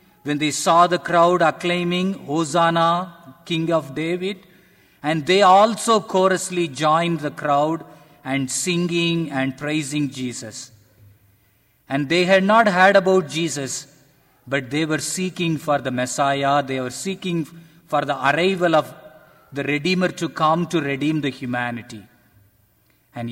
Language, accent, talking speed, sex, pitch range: English, Indian, 135 wpm, male, 135-170 Hz